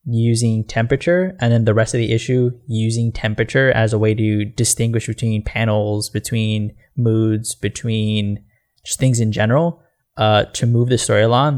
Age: 10-29